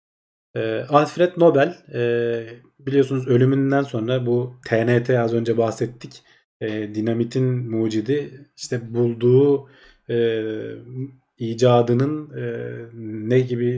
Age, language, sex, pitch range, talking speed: 40-59, Turkish, male, 115-135 Hz, 75 wpm